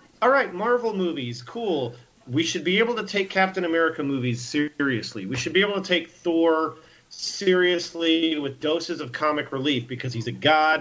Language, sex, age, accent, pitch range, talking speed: English, male, 40-59, American, 135-170 Hz, 180 wpm